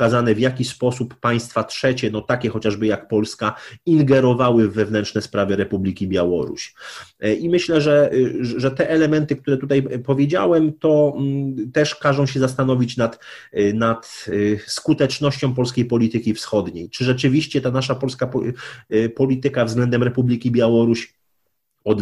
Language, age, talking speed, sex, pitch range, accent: Polish, 30-49, 125 wpm, male, 110-130 Hz, native